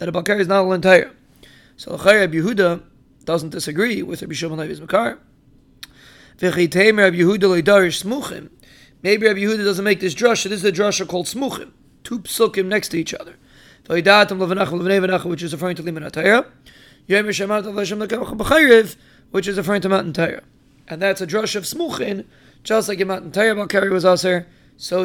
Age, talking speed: 20-39, 155 wpm